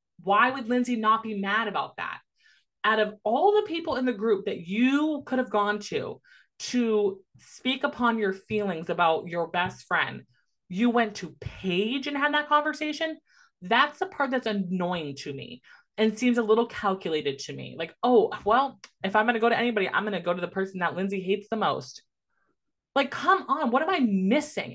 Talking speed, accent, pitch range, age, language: 200 wpm, American, 195-265 Hz, 20-39, English